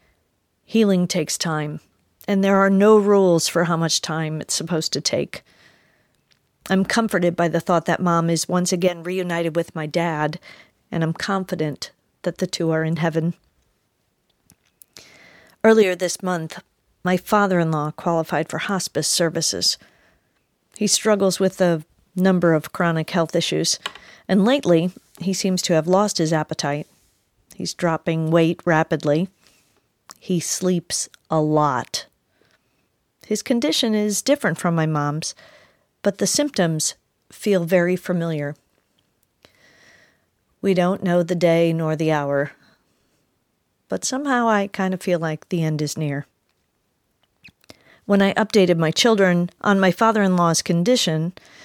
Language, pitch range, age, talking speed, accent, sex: English, 160-195 Hz, 40-59, 135 wpm, American, female